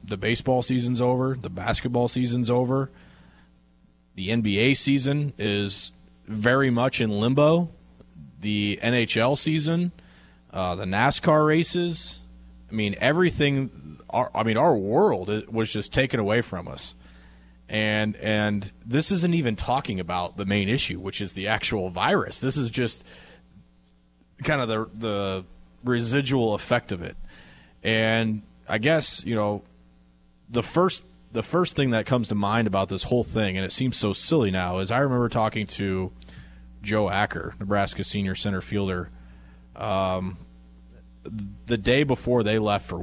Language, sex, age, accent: English, male, 30-49, American